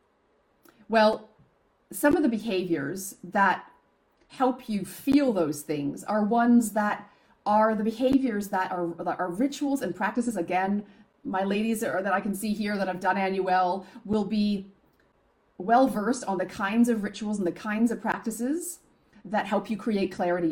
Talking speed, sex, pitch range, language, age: 155 wpm, female, 175-220 Hz, English, 40-59